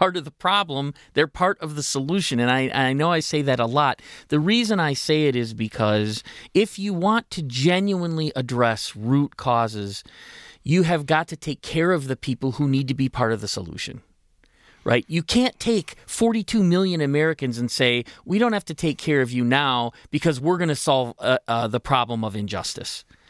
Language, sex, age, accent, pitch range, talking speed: English, male, 40-59, American, 130-210 Hz, 205 wpm